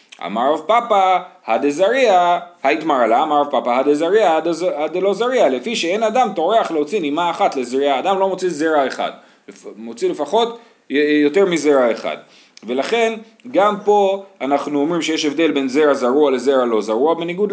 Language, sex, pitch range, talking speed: Hebrew, male, 145-210 Hz, 160 wpm